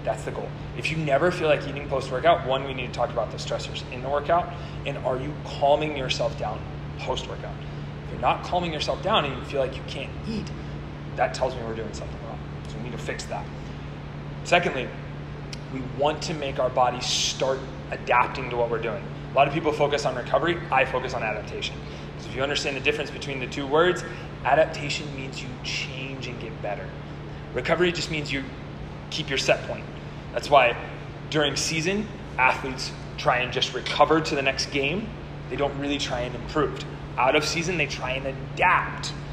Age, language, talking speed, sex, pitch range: 30-49, English, 195 wpm, male, 130-150 Hz